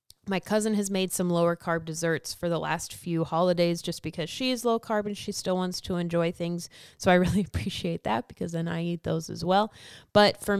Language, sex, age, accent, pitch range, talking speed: English, female, 20-39, American, 165-195 Hz, 225 wpm